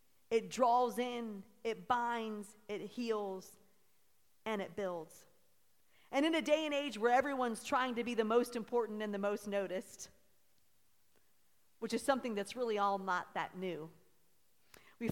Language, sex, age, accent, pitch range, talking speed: English, female, 40-59, American, 200-240 Hz, 150 wpm